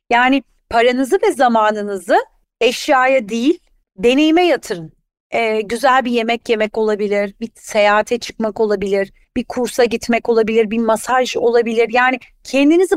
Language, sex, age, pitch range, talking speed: Turkish, female, 30-49, 215-265 Hz, 125 wpm